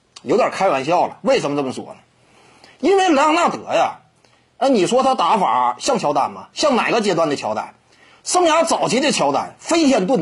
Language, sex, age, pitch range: Chinese, male, 30-49, 225-325 Hz